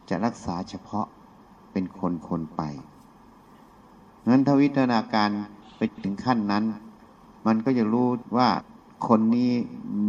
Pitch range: 95-120 Hz